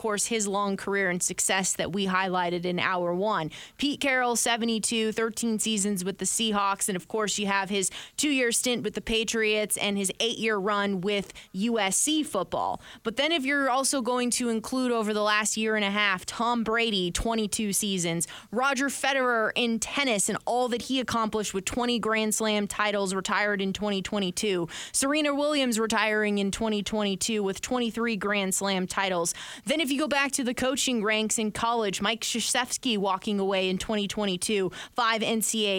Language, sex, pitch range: English, female, 195-245 Hz